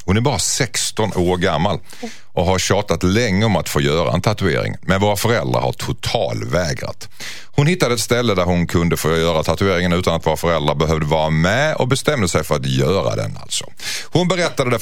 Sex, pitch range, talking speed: male, 85-125 Hz, 205 wpm